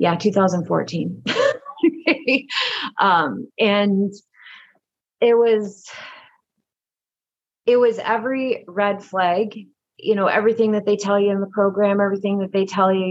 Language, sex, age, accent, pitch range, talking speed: English, female, 30-49, American, 180-215 Hz, 120 wpm